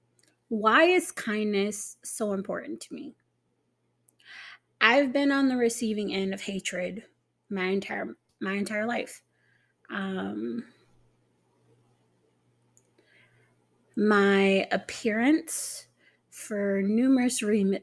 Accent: American